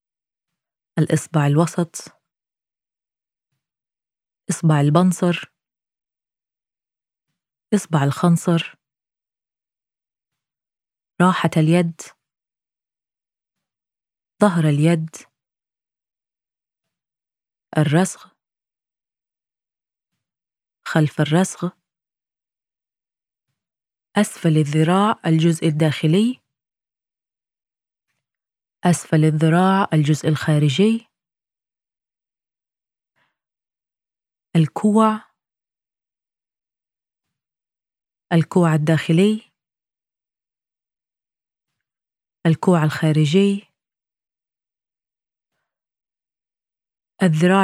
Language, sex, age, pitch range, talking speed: English, female, 20-39, 155-185 Hz, 35 wpm